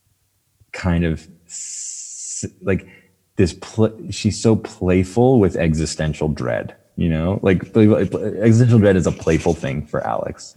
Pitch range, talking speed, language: 80-100 Hz, 120 wpm, English